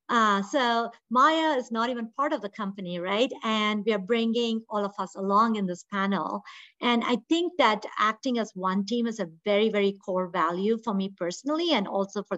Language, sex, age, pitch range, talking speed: English, female, 50-69, 195-240 Hz, 205 wpm